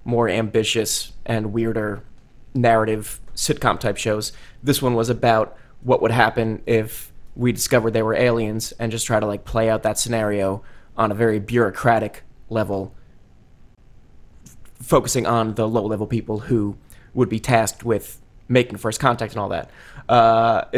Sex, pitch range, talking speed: male, 110-125 Hz, 150 wpm